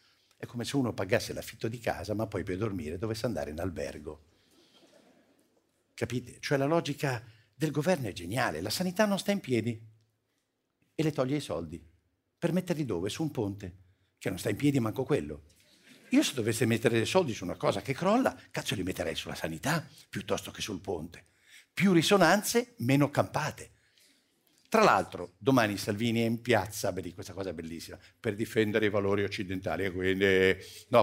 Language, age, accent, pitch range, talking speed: Italian, 50-69, native, 105-170 Hz, 175 wpm